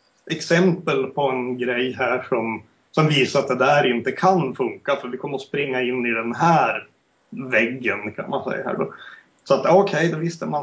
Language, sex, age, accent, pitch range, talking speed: Swedish, male, 30-49, native, 135-175 Hz, 205 wpm